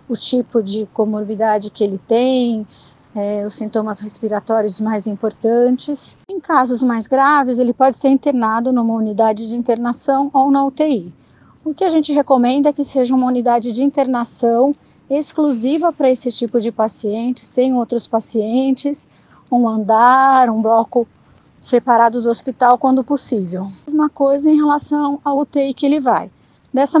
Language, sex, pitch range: Portuguese, female, 225-270 Hz